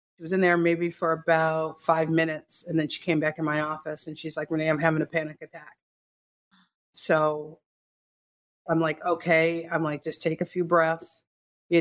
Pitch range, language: 155-170 Hz, English